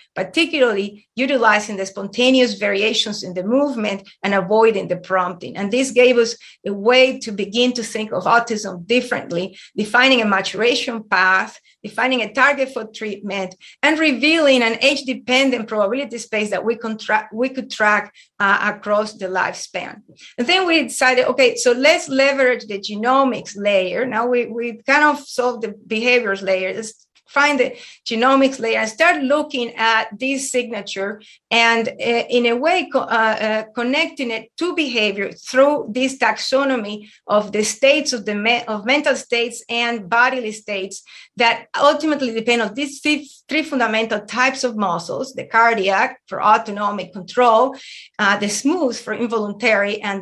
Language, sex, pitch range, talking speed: English, female, 210-260 Hz, 145 wpm